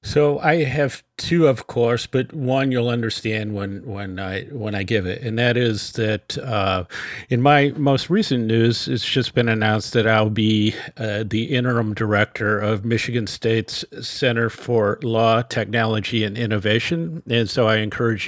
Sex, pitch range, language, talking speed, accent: male, 110-130 Hz, English, 165 wpm, American